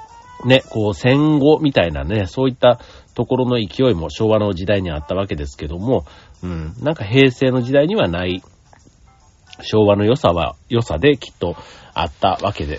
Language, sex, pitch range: Japanese, male, 90-140 Hz